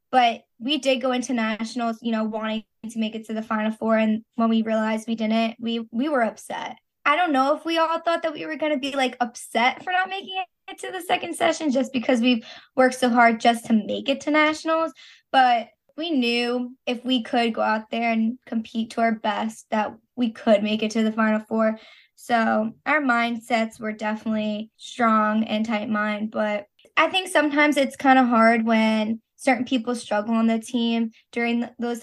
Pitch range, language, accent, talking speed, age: 220-260 Hz, English, American, 205 wpm, 10-29